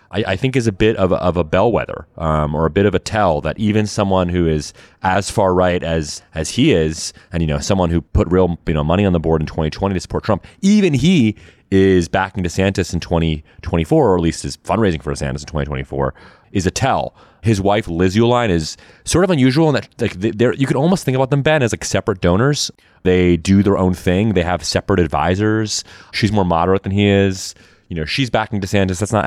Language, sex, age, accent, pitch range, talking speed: English, male, 30-49, American, 80-105 Hz, 230 wpm